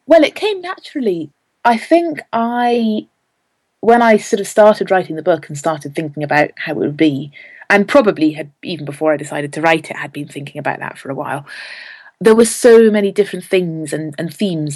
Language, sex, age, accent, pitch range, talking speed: English, female, 30-49, British, 155-215 Hz, 205 wpm